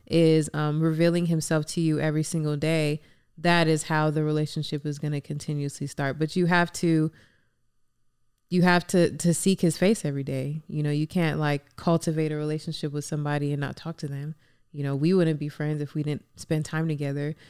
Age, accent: 20-39, American